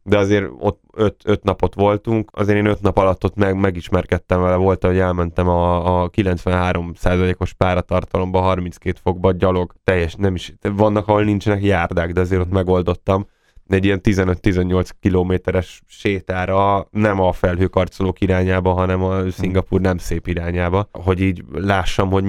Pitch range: 90-105 Hz